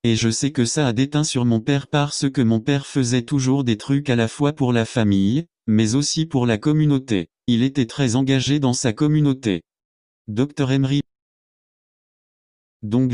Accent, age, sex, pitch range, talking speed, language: French, 30-49, male, 115-140 Hz, 180 wpm, English